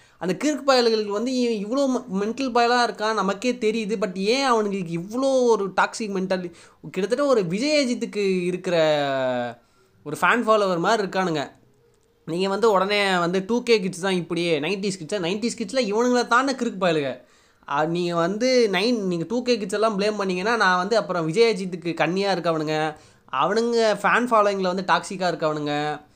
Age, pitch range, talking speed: 20-39, 165-225 Hz, 155 wpm